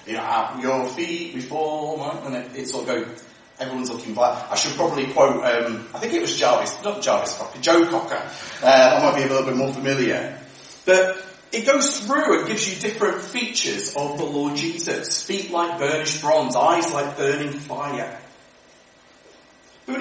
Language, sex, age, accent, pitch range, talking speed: English, male, 30-49, British, 135-215 Hz, 185 wpm